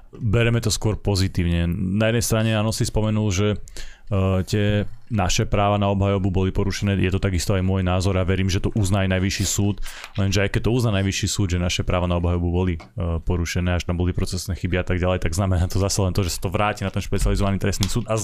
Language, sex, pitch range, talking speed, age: Slovak, male, 95-105 Hz, 225 wpm, 30-49